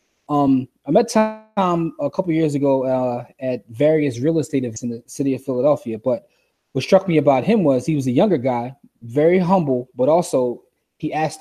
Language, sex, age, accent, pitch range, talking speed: English, male, 20-39, American, 130-160 Hz, 200 wpm